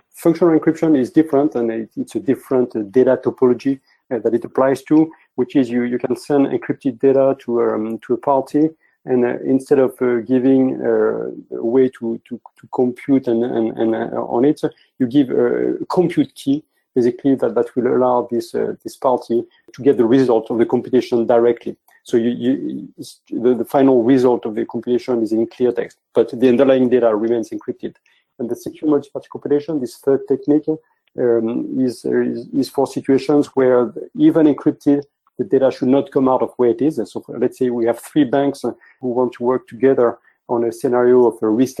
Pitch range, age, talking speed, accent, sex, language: 120-140 Hz, 40-59, 195 wpm, French, male, English